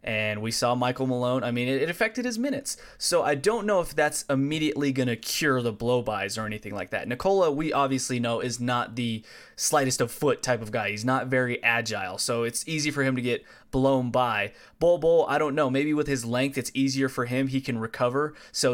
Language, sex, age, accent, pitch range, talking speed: English, male, 20-39, American, 120-145 Hz, 225 wpm